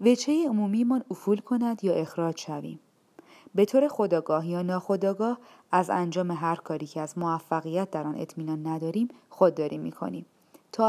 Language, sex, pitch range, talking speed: Persian, female, 160-225 Hz, 155 wpm